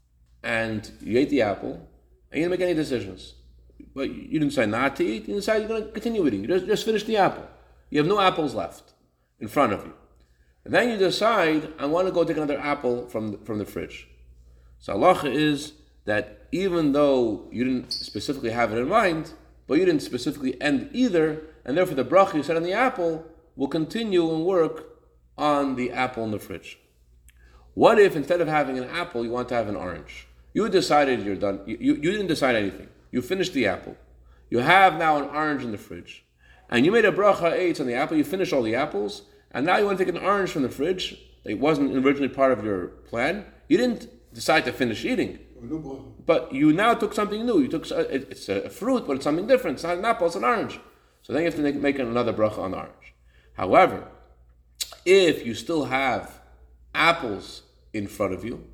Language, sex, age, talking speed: English, male, 30-49, 215 wpm